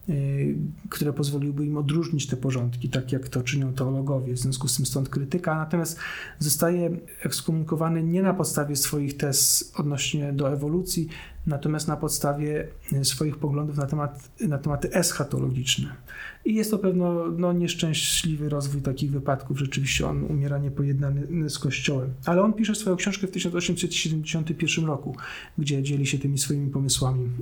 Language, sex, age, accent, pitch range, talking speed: Polish, male, 40-59, native, 140-165 Hz, 145 wpm